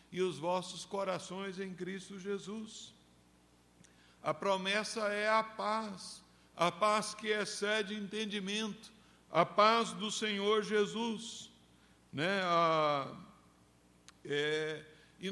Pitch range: 175-220 Hz